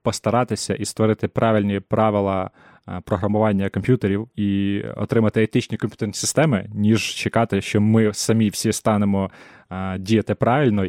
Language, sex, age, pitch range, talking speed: Ukrainian, male, 20-39, 100-115 Hz, 125 wpm